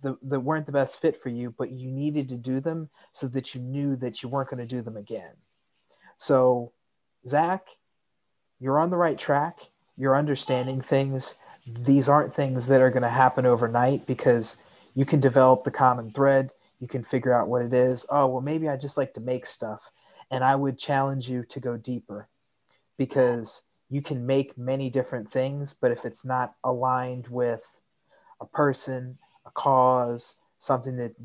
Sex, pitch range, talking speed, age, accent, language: male, 120-135 Hz, 175 wpm, 30-49, American, English